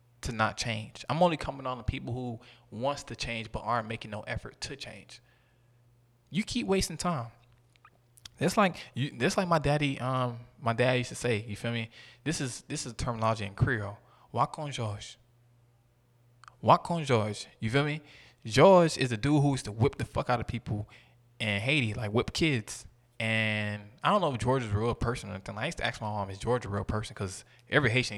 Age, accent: 20-39, American